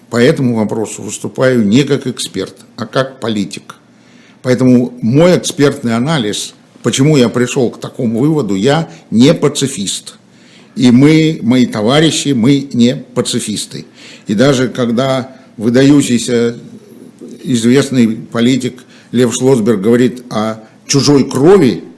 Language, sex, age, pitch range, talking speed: Russian, male, 60-79, 120-145 Hz, 115 wpm